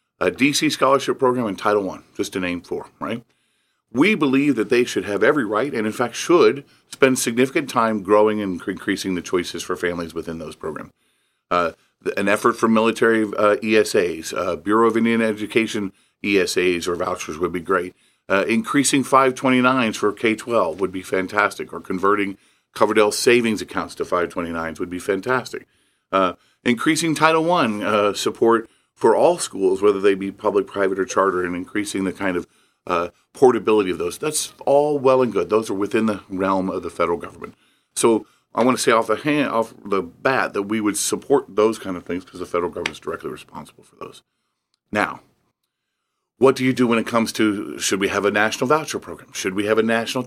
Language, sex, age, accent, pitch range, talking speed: English, male, 40-59, American, 100-130 Hz, 190 wpm